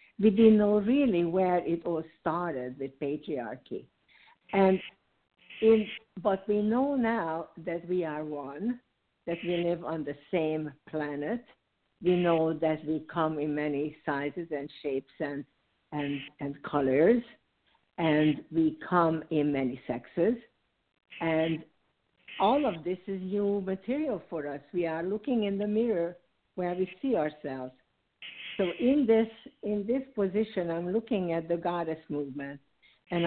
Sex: female